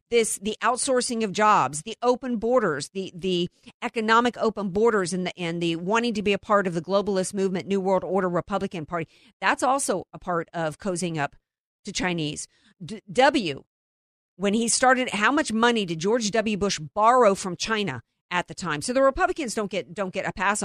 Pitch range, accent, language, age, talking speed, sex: 190-265 Hz, American, English, 50-69, 190 wpm, female